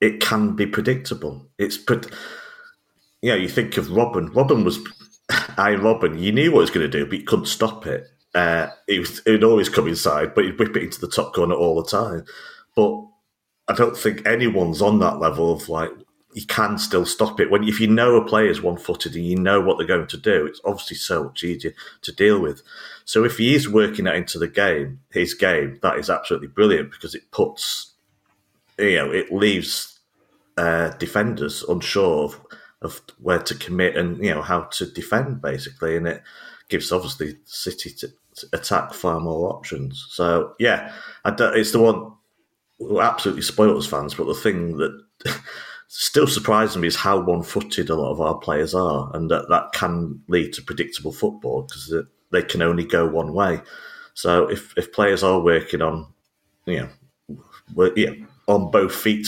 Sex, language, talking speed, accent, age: male, English, 190 wpm, British, 40-59